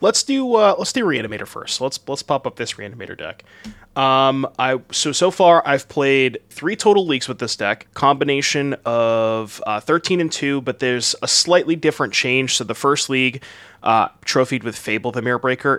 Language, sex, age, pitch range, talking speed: English, male, 20-39, 110-145 Hz, 190 wpm